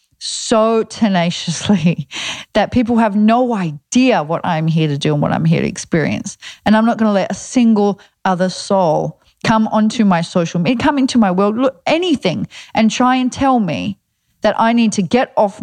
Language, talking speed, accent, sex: English, 190 wpm, Australian, female